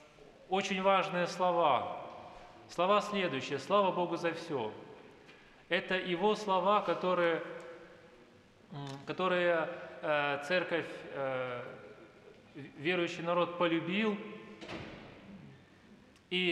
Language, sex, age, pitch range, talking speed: Russian, male, 20-39, 155-190 Hz, 70 wpm